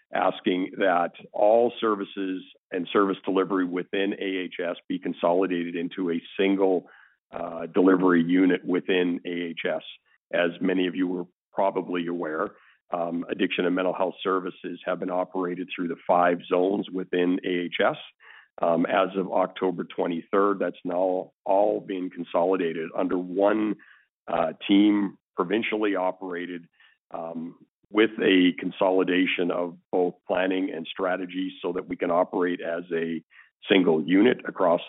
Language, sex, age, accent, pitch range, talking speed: English, male, 50-69, American, 85-95 Hz, 130 wpm